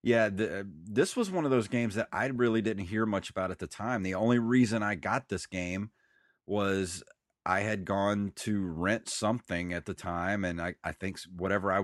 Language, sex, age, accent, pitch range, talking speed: English, male, 30-49, American, 95-115 Hz, 205 wpm